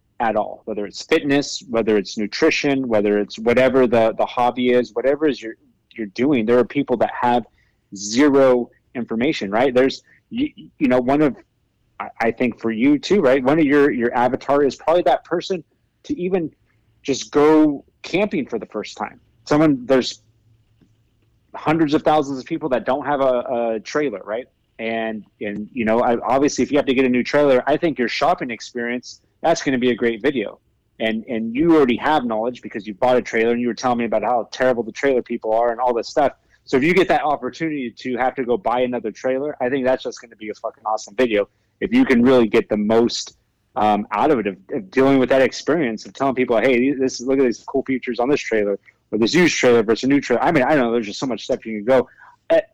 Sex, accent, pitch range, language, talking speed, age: male, American, 110-135 Hz, English, 230 wpm, 30-49